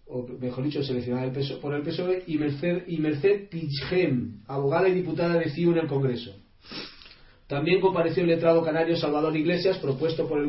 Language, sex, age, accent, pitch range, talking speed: Spanish, male, 40-59, Spanish, 140-180 Hz, 185 wpm